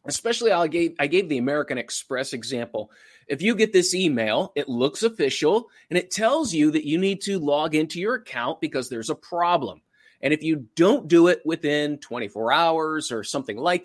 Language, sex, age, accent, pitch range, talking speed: English, male, 30-49, American, 140-185 Hz, 195 wpm